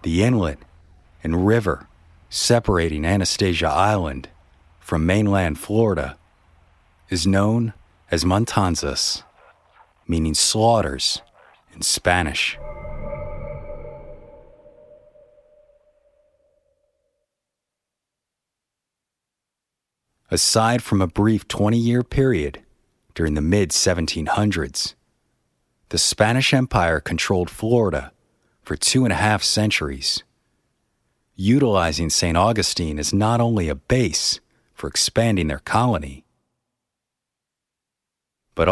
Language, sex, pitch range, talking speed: English, male, 80-115 Hz, 80 wpm